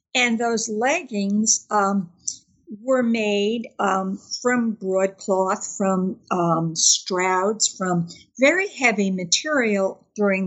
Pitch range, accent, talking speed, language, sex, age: 205-255 Hz, American, 95 wpm, English, female, 60-79